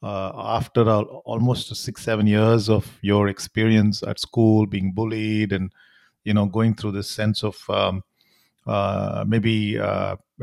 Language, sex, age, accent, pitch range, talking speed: English, male, 50-69, Indian, 100-115 Hz, 145 wpm